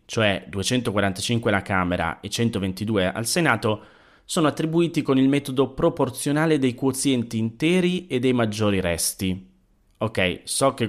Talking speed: 130 wpm